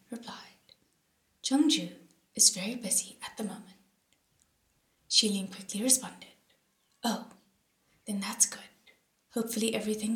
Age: 20-39